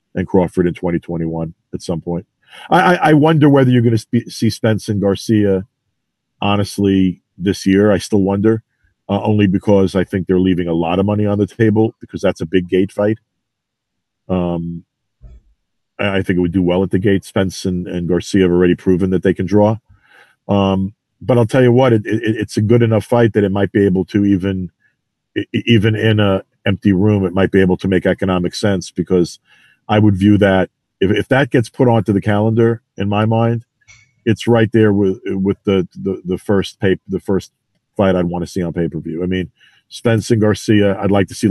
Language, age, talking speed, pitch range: English, 40-59, 210 wpm, 95-110 Hz